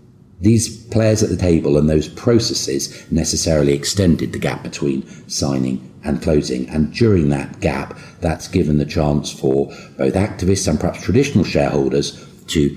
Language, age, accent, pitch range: English, 50-69, British, 70-85 Hz